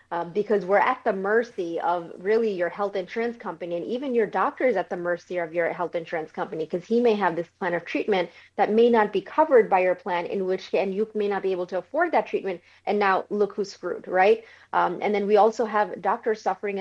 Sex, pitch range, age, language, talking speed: female, 180-210 Hz, 30-49, English, 245 wpm